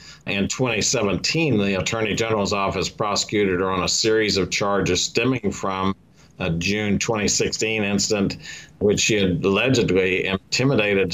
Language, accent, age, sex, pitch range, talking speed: English, American, 50-69, male, 95-105 Hz, 130 wpm